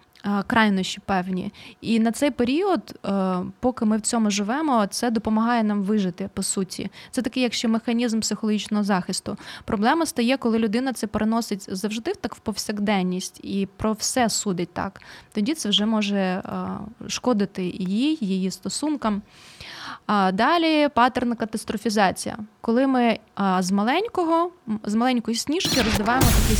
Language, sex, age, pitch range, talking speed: Ukrainian, female, 20-39, 200-250 Hz, 135 wpm